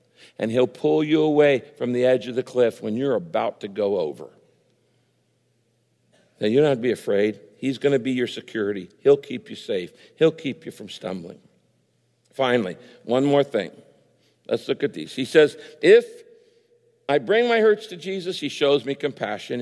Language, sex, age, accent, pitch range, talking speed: English, male, 60-79, American, 120-170 Hz, 180 wpm